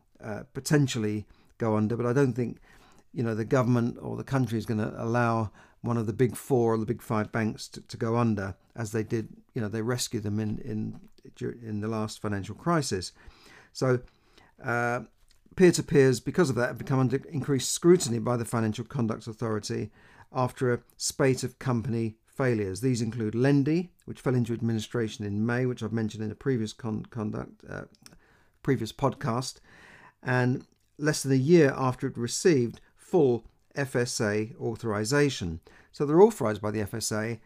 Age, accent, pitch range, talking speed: 50-69, British, 110-130 Hz, 175 wpm